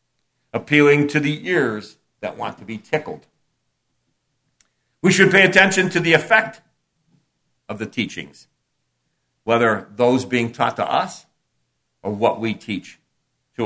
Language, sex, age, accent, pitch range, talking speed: English, male, 60-79, American, 115-160 Hz, 130 wpm